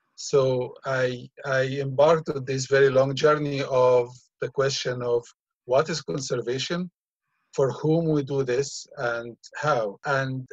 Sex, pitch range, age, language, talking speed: male, 130-155 Hz, 50-69, English, 135 wpm